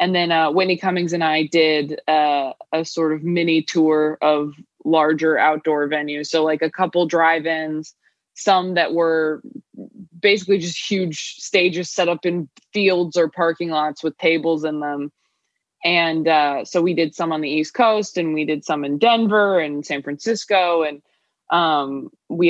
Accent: American